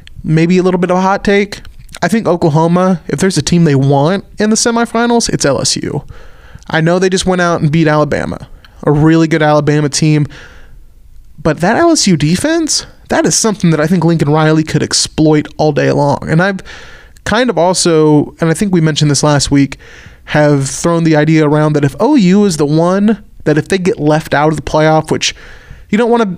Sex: male